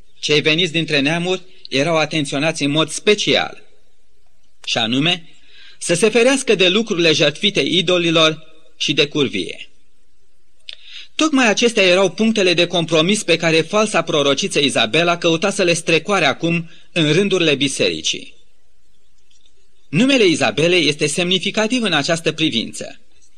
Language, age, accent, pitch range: Romanian, 30-49, native, 160-210 Hz